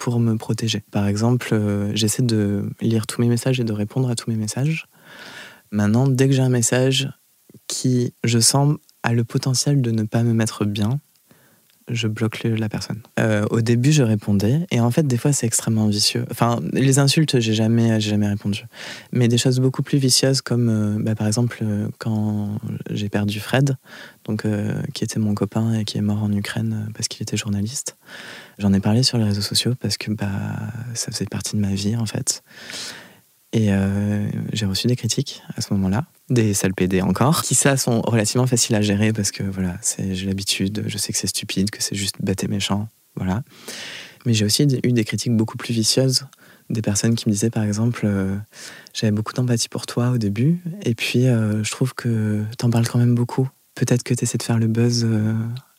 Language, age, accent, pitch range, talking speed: French, 20-39, French, 105-125 Hz, 210 wpm